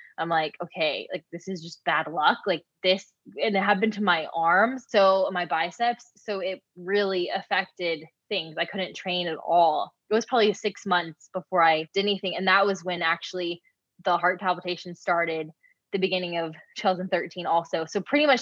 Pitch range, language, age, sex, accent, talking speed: 170-205 Hz, English, 10-29, female, American, 180 wpm